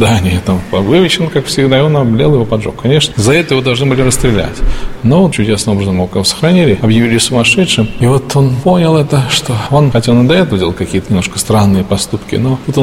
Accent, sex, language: native, male, Russian